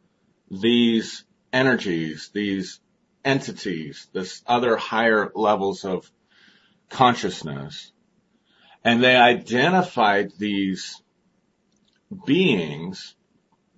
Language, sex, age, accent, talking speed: English, male, 40-59, American, 65 wpm